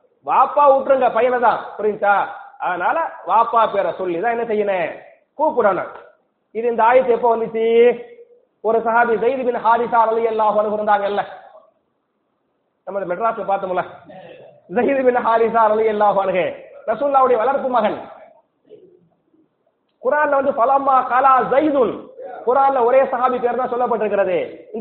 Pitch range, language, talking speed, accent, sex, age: 215-265 Hz, English, 115 wpm, Indian, male, 30-49